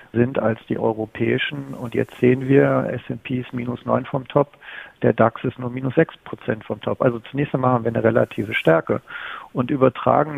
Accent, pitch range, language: German, 120-135 Hz, German